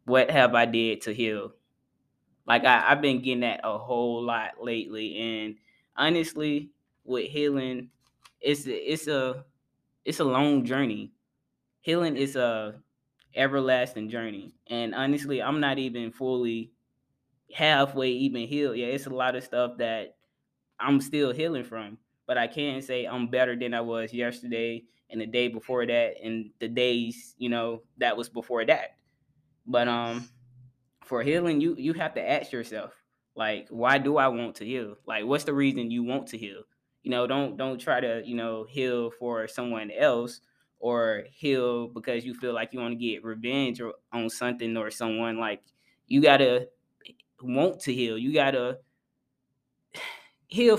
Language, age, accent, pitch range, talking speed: English, 10-29, American, 115-140 Hz, 165 wpm